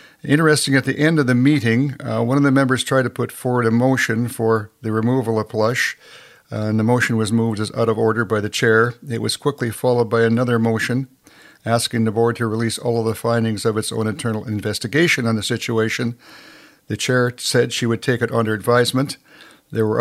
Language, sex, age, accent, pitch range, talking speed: English, male, 60-79, American, 110-130 Hz, 215 wpm